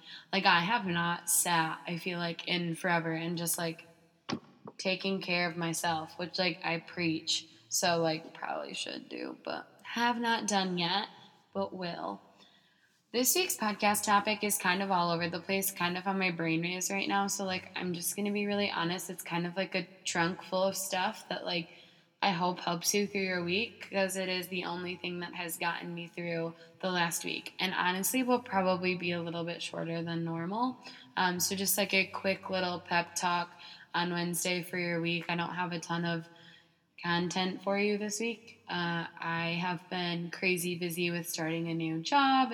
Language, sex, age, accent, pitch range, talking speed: English, female, 20-39, American, 170-190 Hz, 195 wpm